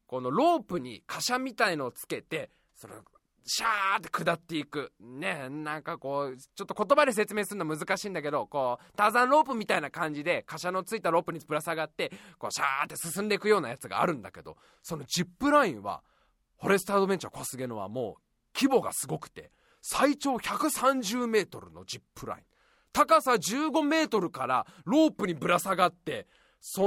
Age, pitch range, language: 20-39, 160-240 Hz, Japanese